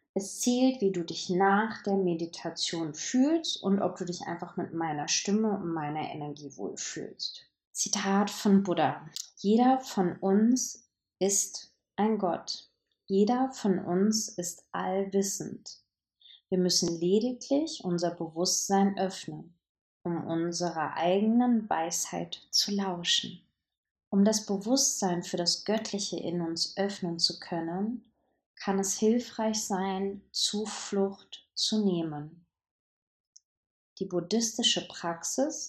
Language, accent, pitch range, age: German, German, 175-220 Hz, 20-39